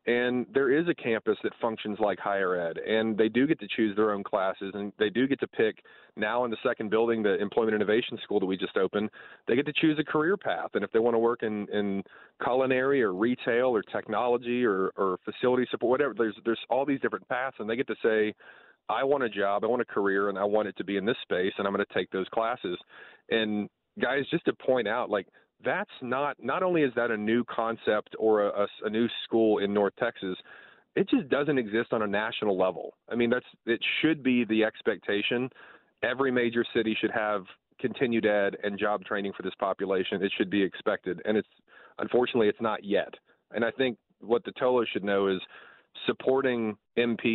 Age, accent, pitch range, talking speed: 40-59, American, 100-120 Hz, 220 wpm